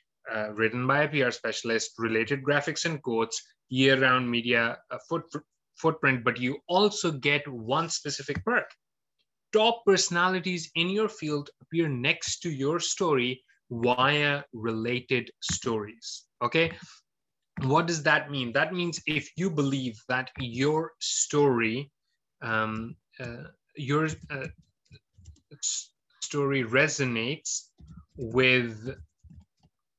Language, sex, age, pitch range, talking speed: English, male, 30-49, 120-155 Hz, 105 wpm